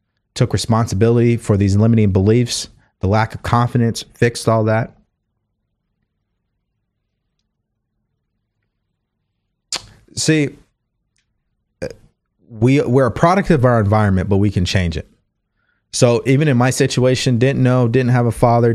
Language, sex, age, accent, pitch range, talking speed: English, male, 30-49, American, 105-130 Hz, 120 wpm